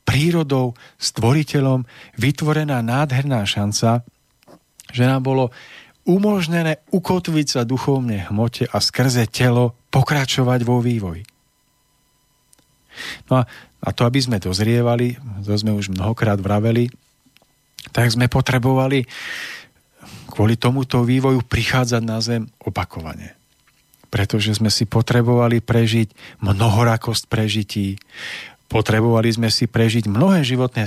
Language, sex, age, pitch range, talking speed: Slovak, male, 40-59, 110-135 Hz, 105 wpm